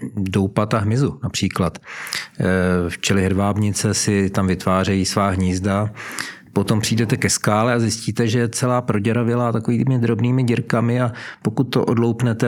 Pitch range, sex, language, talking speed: 100-120 Hz, male, Czech, 135 wpm